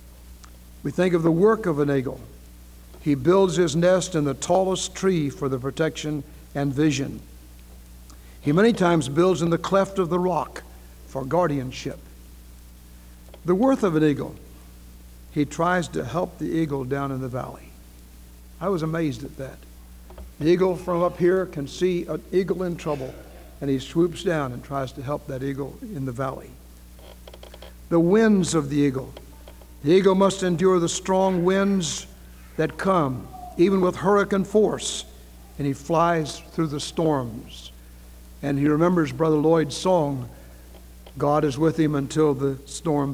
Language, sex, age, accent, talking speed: English, male, 60-79, American, 160 wpm